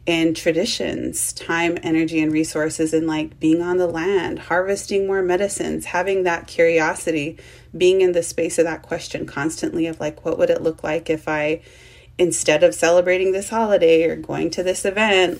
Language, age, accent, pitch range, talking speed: English, 30-49, American, 155-175 Hz, 175 wpm